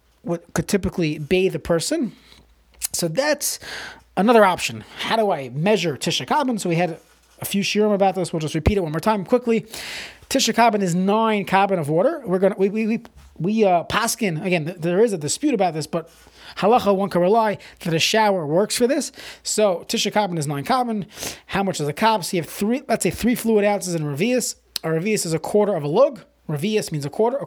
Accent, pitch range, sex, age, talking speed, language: American, 170-220 Hz, male, 30-49, 215 wpm, English